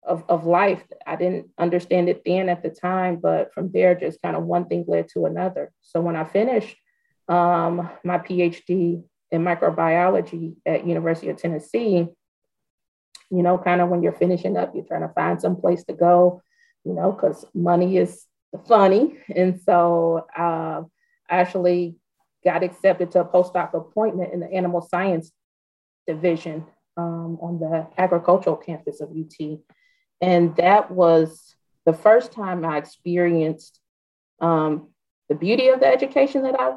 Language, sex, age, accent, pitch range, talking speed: English, female, 30-49, American, 165-180 Hz, 155 wpm